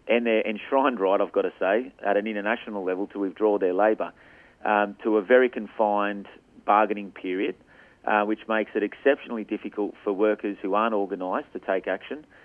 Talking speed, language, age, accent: 180 wpm, English, 40-59, Australian